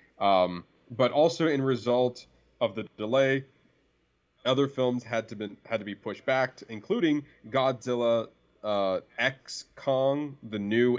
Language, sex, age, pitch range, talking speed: English, male, 20-39, 105-135 Hz, 135 wpm